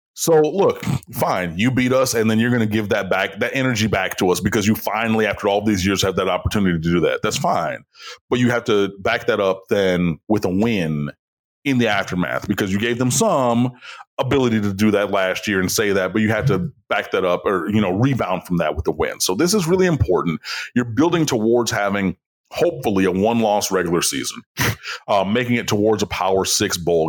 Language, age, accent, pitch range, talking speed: English, 30-49, American, 95-120 Hz, 225 wpm